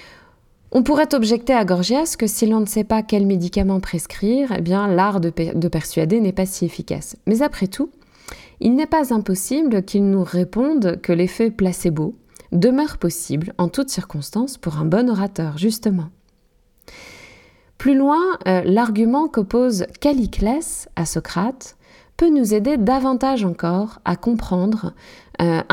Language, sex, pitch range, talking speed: French, female, 180-240 Hz, 150 wpm